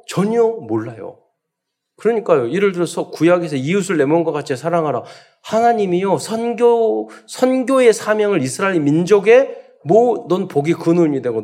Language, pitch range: Korean, 150-225 Hz